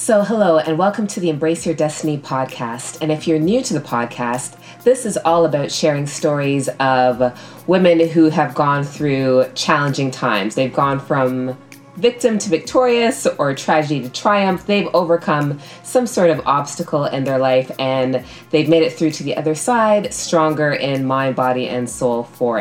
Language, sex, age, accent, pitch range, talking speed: English, female, 20-39, American, 130-160 Hz, 175 wpm